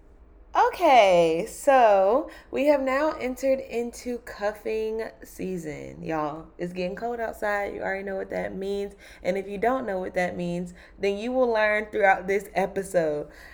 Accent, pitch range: American, 170-225 Hz